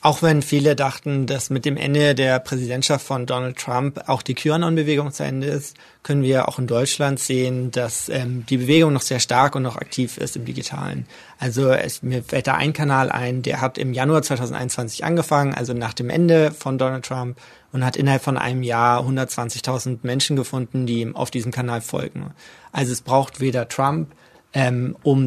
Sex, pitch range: male, 125-145 Hz